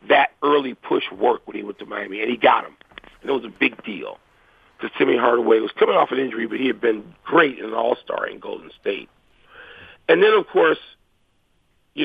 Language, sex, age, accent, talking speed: English, male, 50-69, American, 215 wpm